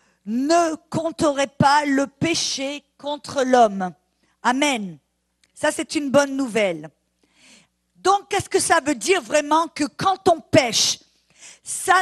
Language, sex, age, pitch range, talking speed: English, female, 50-69, 255-335 Hz, 125 wpm